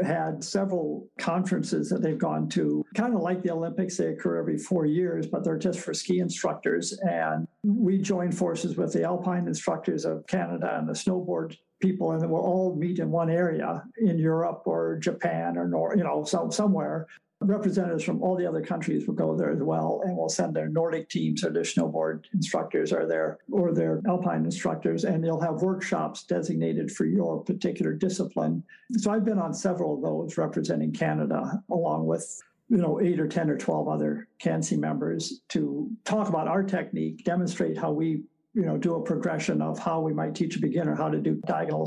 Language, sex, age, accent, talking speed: English, male, 60-79, American, 195 wpm